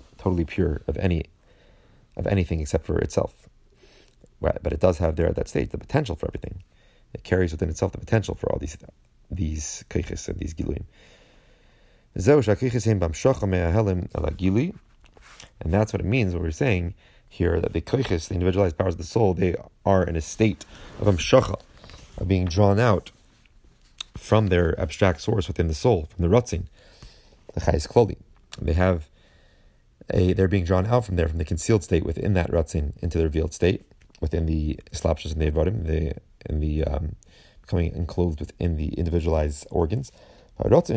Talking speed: 165 wpm